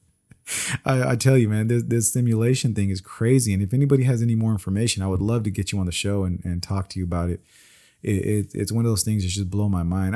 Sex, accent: male, American